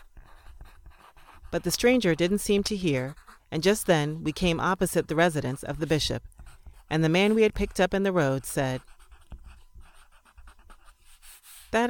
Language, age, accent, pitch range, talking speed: English, 30-49, American, 130-175 Hz, 150 wpm